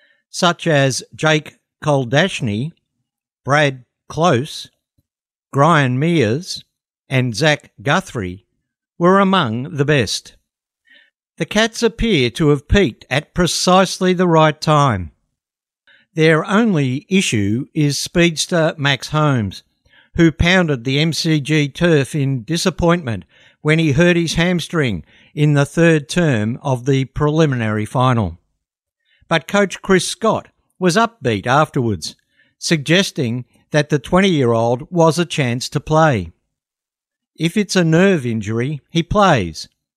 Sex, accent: male, Australian